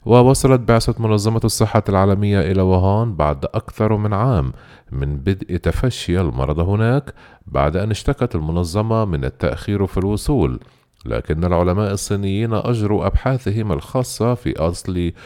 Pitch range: 85-115 Hz